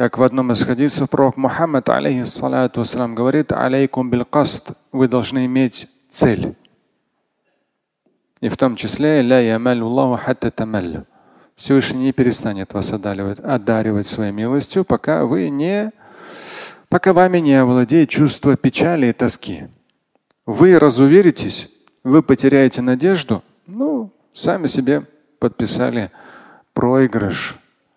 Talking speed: 100 wpm